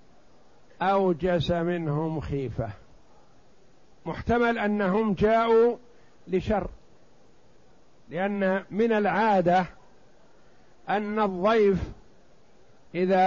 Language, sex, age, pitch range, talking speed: Arabic, male, 50-69, 175-215 Hz, 60 wpm